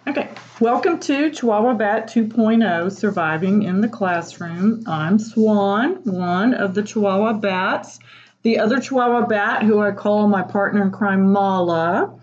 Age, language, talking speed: 40-59, English, 140 wpm